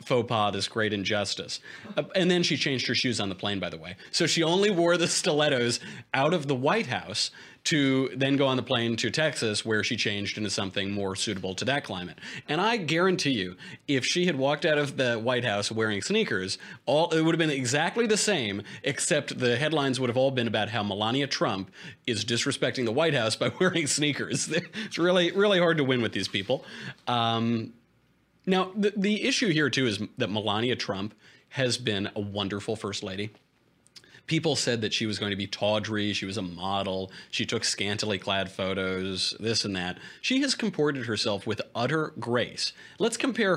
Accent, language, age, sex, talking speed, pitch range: American, English, 30-49, male, 200 wpm, 105-145 Hz